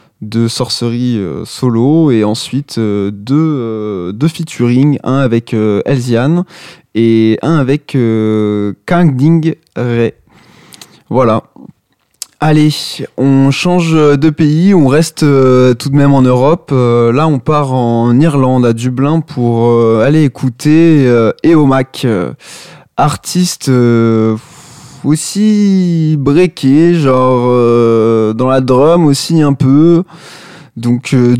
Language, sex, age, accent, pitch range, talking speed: French, male, 20-39, French, 115-155 Hz, 125 wpm